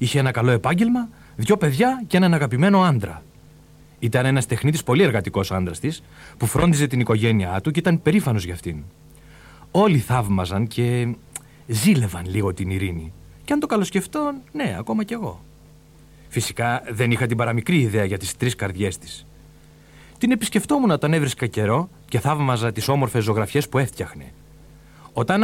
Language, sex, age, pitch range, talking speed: Greek, male, 40-59, 110-170 Hz, 155 wpm